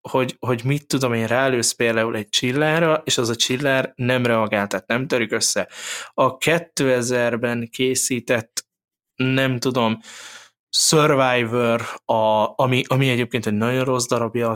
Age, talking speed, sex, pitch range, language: 20-39, 135 wpm, male, 115-135 Hz, Hungarian